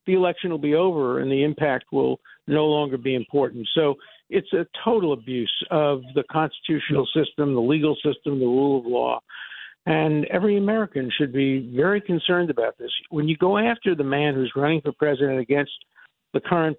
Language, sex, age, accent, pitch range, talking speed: English, male, 50-69, American, 135-160 Hz, 180 wpm